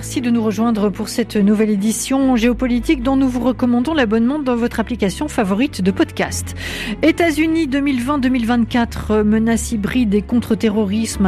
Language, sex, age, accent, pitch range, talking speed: English, female, 50-69, French, 190-245 Hz, 140 wpm